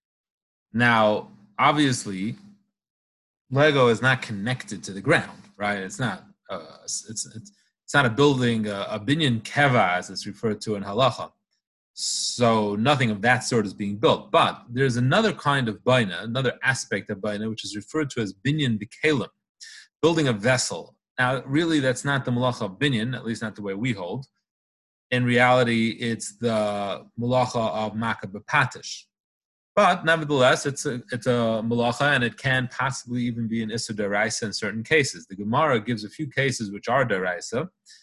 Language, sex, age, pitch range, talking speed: English, male, 30-49, 105-135 Hz, 165 wpm